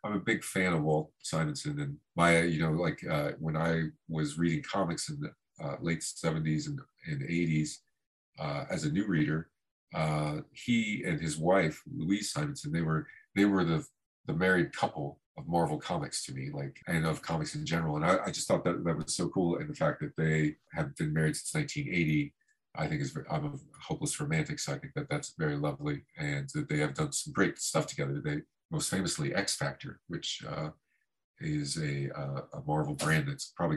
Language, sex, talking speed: English, male, 200 wpm